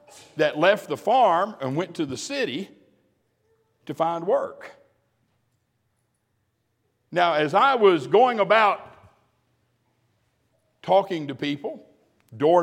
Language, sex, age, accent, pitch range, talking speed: English, male, 60-79, American, 125-180 Hz, 105 wpm